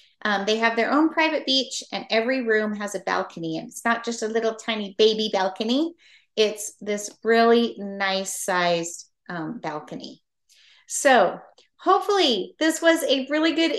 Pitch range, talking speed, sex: 205-270 Hz, 150 wpm, female